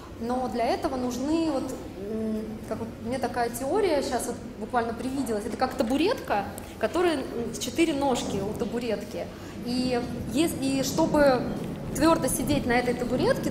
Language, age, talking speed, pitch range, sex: Russian, 20-39, 135 wpm, 235-285 Hz, female